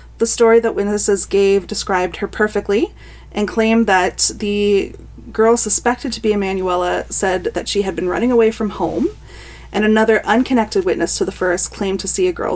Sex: female